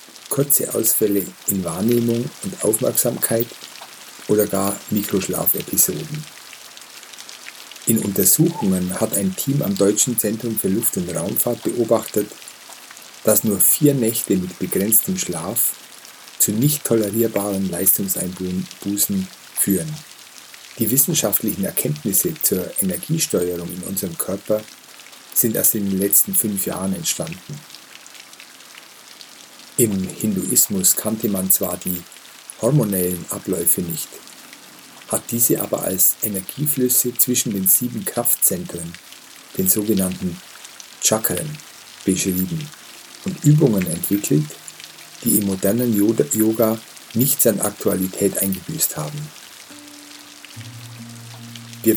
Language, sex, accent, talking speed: German, male, German, 100 wpm